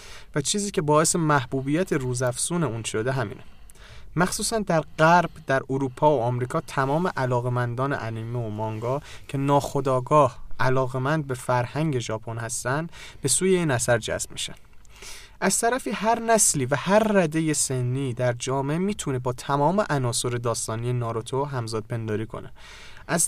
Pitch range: 125-165 Hz